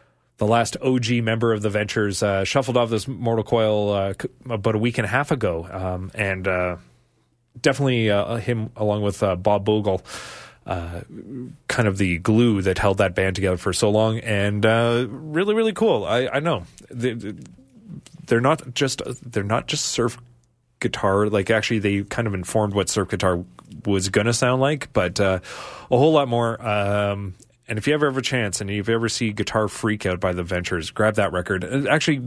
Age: 30-49